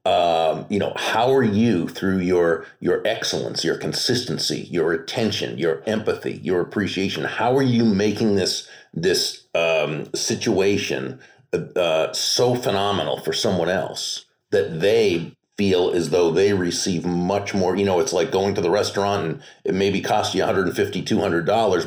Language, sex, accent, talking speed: English, male, American, 150 wpm